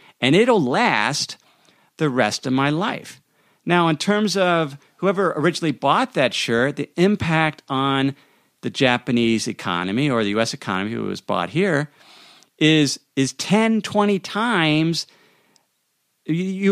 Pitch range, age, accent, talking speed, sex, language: 130-185 Hz, 50-69, American, 135 wpm, male, English